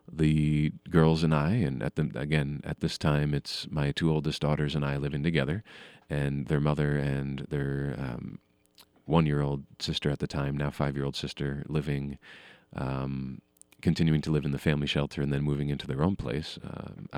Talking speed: 180 wpm